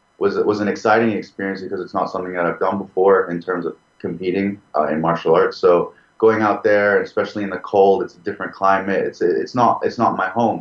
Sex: male